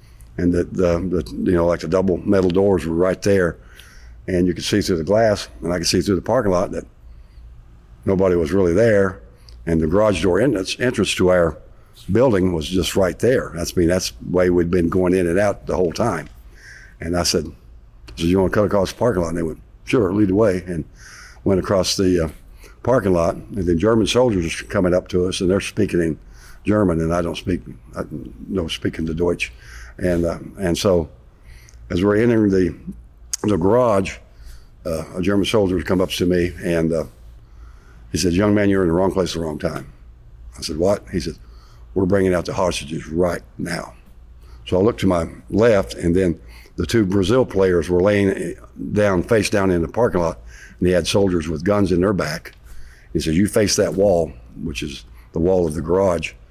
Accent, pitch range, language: American, 75-95 Hz, English